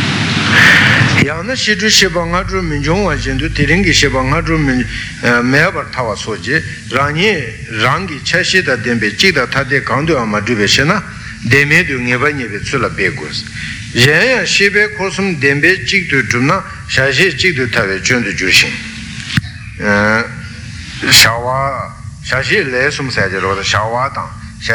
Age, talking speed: 60-79, 40 wpm